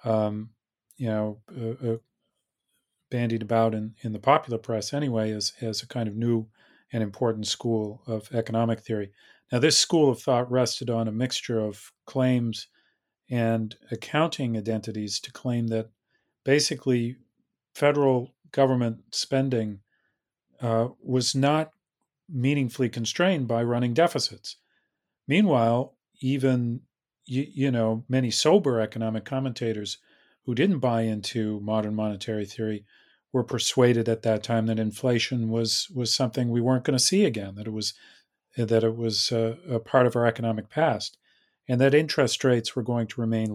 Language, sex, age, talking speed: English, male, 40-59, 145 wpm